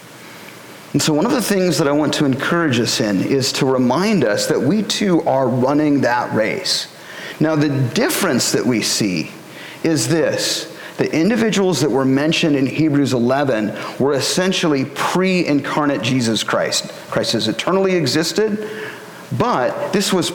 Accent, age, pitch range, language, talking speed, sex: American, 40-59, 130-170 Hz, English, 155 wpm, male